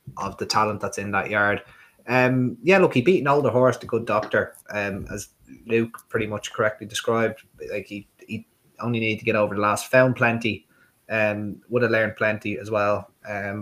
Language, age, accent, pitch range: English, 20-39, Irish, 105-120 Hz